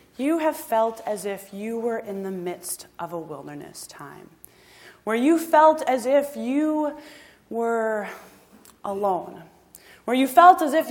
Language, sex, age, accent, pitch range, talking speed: English, female, 20-39, American, 190-295 Hz, 150 wpm